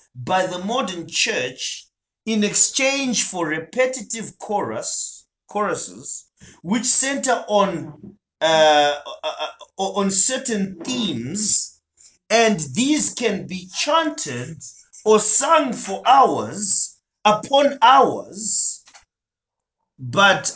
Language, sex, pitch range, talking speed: English, male, 155-240 Hz, 95 wpm